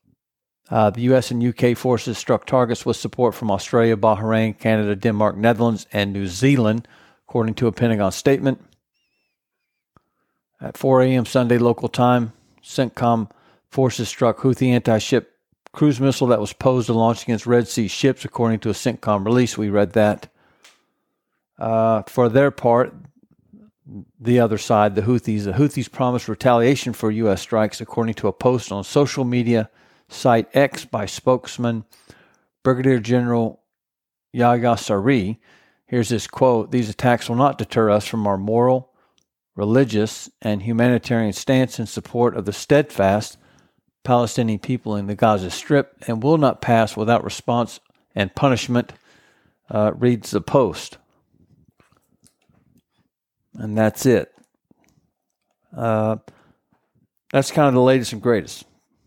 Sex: male